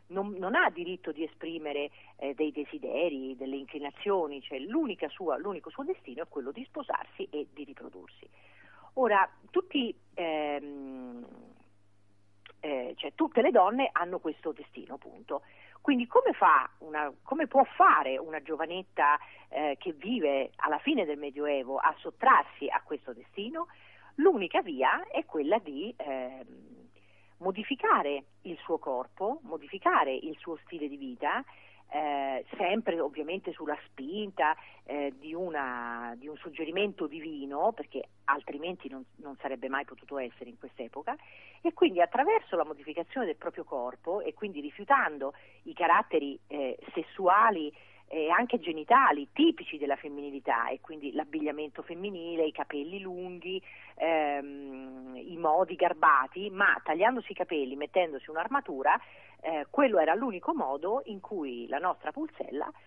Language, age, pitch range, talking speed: Italian, 40-59, 140-200 Hz, 135 wpm